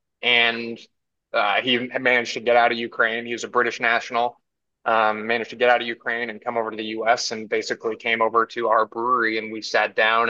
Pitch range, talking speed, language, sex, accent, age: 110-120 Hz, 220 wpm, English, male, American, 20-39